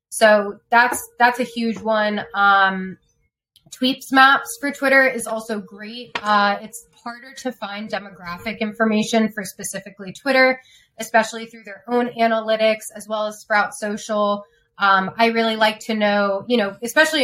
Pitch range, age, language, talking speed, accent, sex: 195-235 Hz, 20-39, English, 150 wpm, American, female